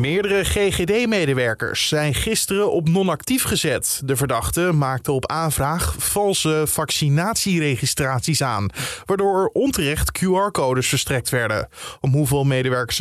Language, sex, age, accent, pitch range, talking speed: Dutch, male, 20-39, Dutch, 130-180 Hz, 105 wpm